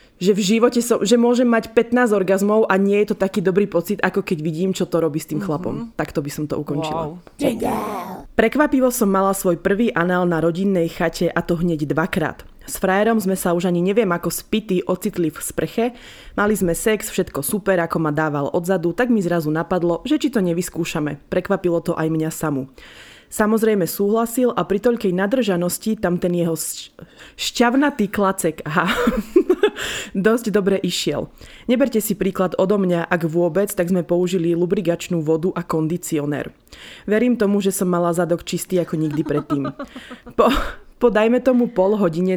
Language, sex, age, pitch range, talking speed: Slovak, female, 20-39, 165-205 Hz, 175 wpm